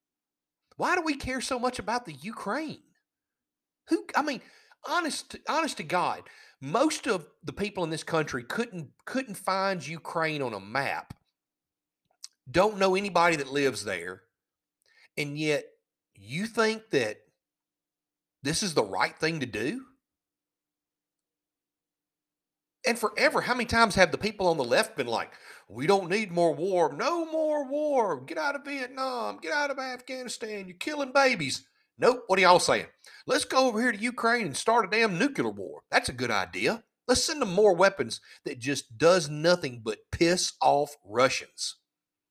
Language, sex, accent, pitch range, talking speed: English, male, American, 170-270 Hz, 160 wpm